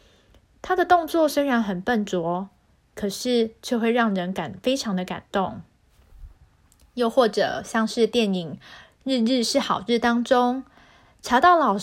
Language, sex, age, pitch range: Chinese, female, 20-39, 200-255 Hz